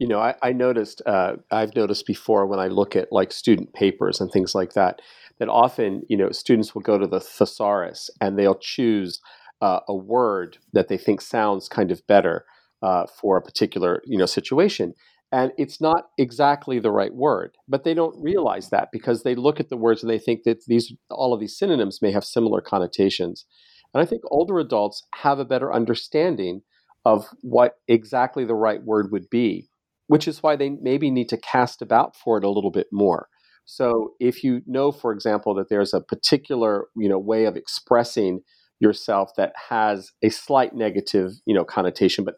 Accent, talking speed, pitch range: American, 195 wpm, 100-130 Hz